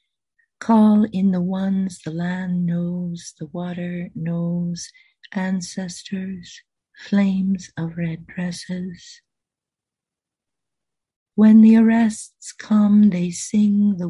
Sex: female